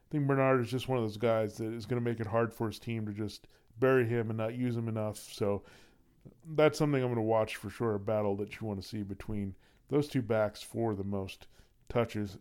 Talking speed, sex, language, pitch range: 250 wpm, male, English, 110-130 Hz